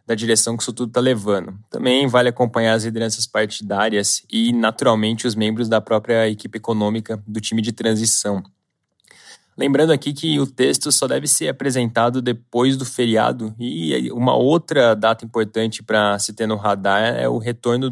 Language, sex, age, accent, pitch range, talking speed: Portuguese, male, 20-39, Brazilian, 110-125 Hz, 165 wpm